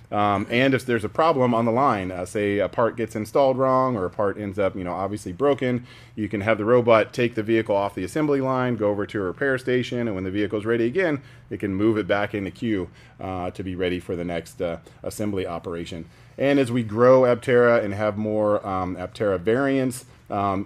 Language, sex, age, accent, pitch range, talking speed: English, male, 30-49, American, 95-115 Hz, 230 wpm